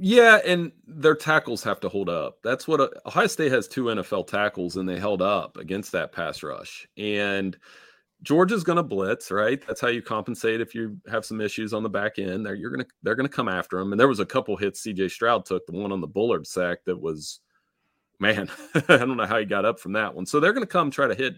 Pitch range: 95-120 Hz